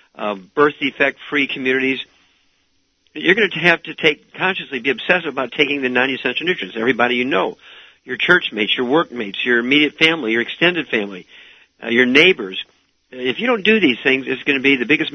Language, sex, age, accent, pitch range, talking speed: English, male, 50-69, American, 115-145 Hz, 185 wpm